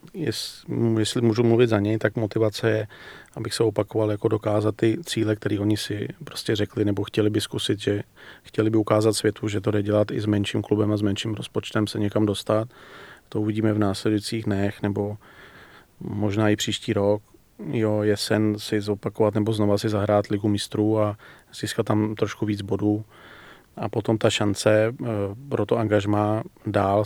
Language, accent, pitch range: Czech, native, 105-110 Hz